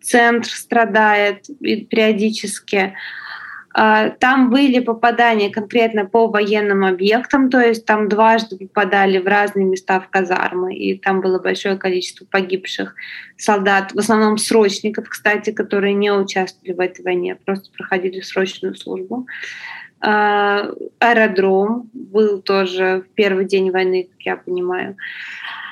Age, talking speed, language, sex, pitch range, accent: 20-39, 120 wpm, Russian, female, 195-230 Hz, native